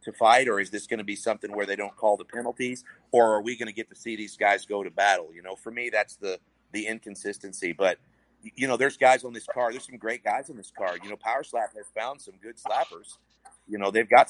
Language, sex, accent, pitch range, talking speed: English, male, American, 100-125 Hz, 270 wpm